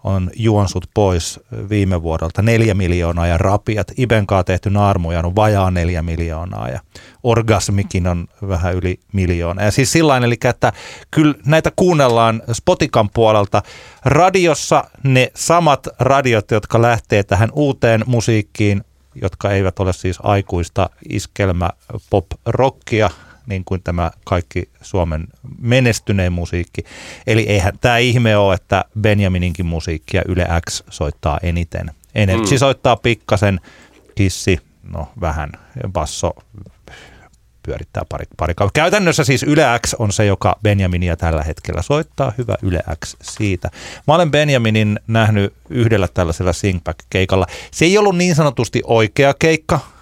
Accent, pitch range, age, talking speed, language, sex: native, 90-120 Hz, 30-49, 125 wpm, Finnish, male